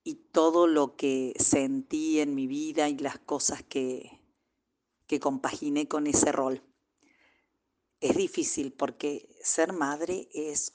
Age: 40-59